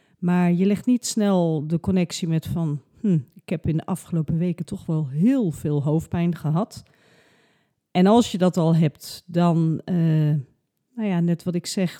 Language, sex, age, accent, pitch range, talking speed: Dutch, female, 40-59, Dutch, 160-210 Hz, 180 wpm